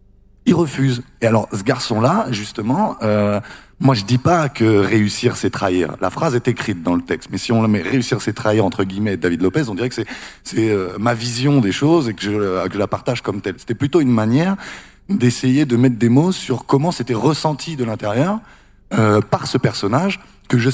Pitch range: 105-140 Hz